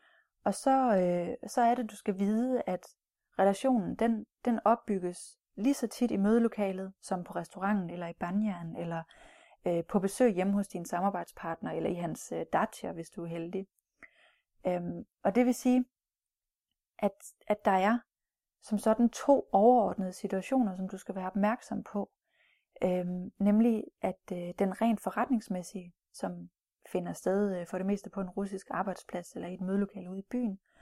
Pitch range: 185-230 Hz